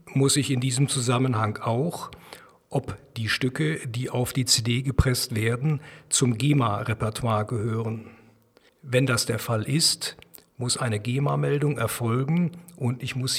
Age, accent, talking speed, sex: 50-69, German, 135 wpm, male